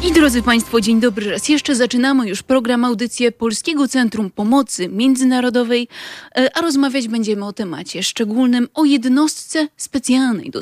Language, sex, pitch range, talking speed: Polish, female, 205-260 Hz, 140 wpm